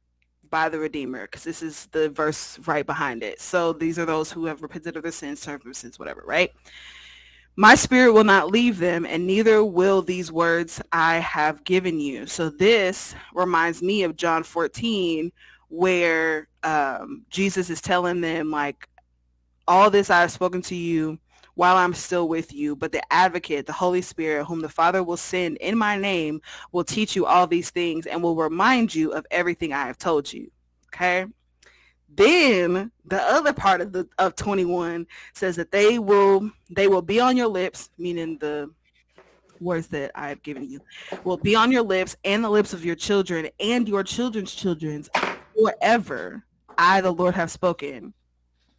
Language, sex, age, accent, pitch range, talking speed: English, female, 20-39, American, 155-190 Hz, 175 wpm